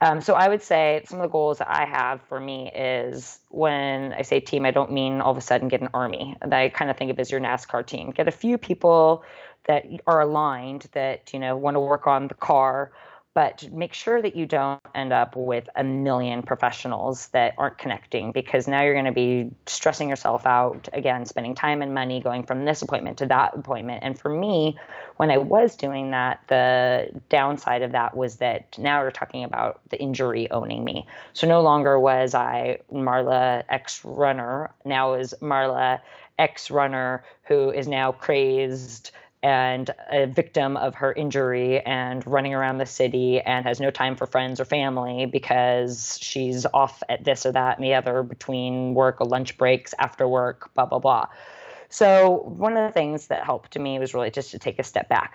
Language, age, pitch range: English, 20-39, 125-145 Hz